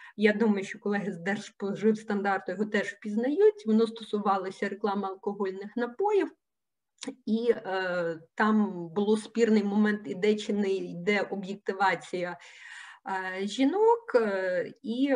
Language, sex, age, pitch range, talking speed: Ukrainian, female, 30-49, 195-250 Hz, 115 wpm